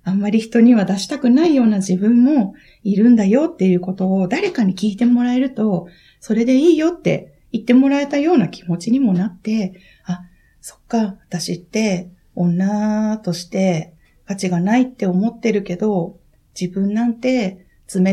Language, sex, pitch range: Japanese, female, 185-250 Hz